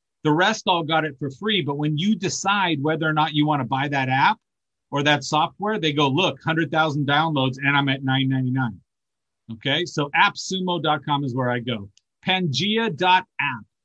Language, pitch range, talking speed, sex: English, 135-175 Hz, 170 wpm, male